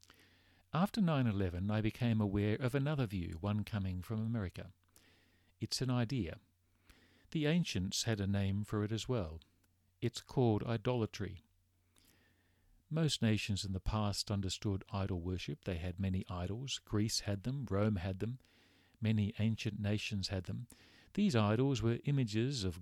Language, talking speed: English, 145 wpm